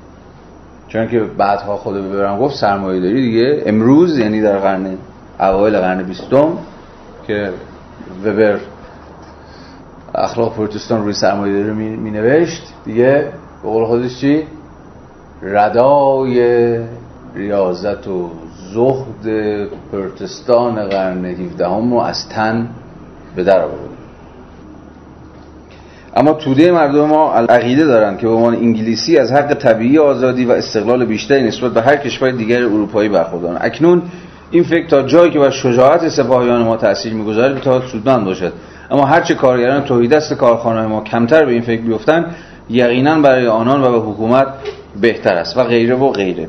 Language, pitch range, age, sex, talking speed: Persian, 100-135 Hz, 40-59, male, 135 wpm